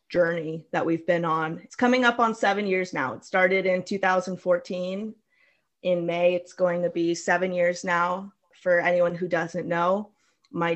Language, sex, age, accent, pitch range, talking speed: English, female, 20-39, American, 175-200 Hz, 175 wpm